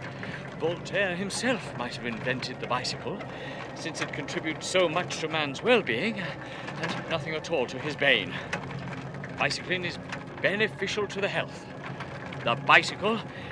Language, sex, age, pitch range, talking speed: English, male, 50-69, 140-185 Hz, 135 wpm